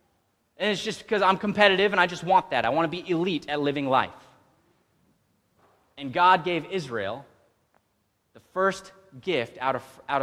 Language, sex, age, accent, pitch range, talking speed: English, male, 30-49, American, 140-200 Hz, 160 wpm